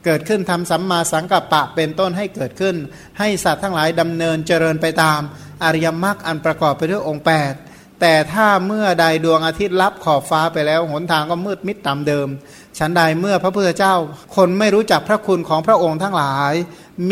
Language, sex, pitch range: Thai, male, 160-190 Hz